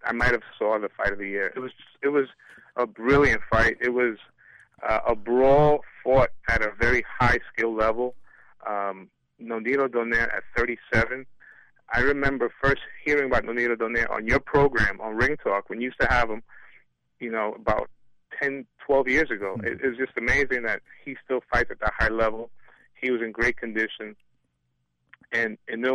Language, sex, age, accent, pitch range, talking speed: English, male, 30-49, American, 110-125 Hz, 185 wpm